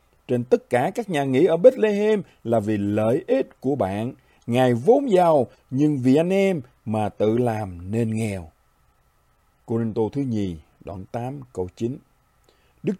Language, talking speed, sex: Vietnamese, 155 wpm, male